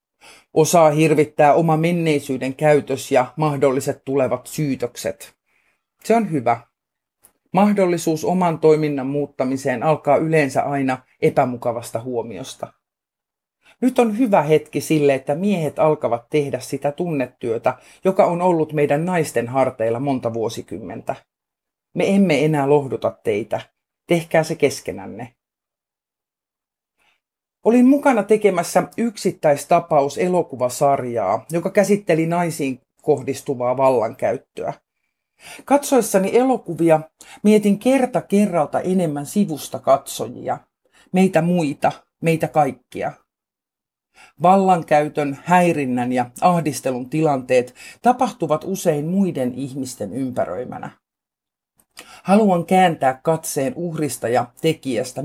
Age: 50-69